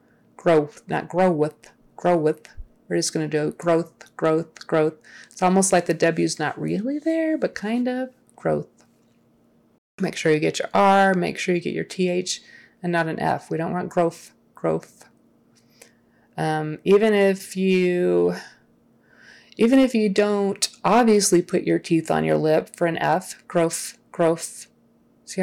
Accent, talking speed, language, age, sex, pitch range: American, 160 wpm, English, 30-49, female, 165-210 Hz